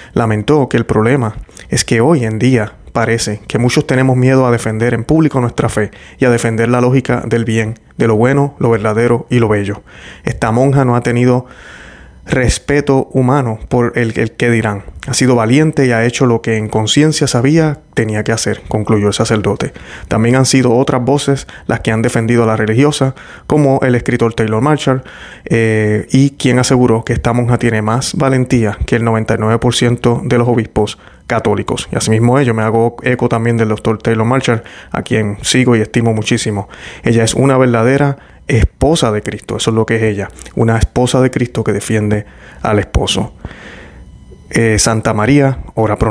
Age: 30-49